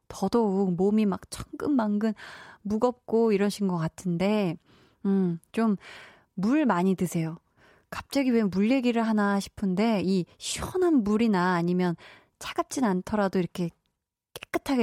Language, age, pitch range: Korean, 20-39, 190-260 Hz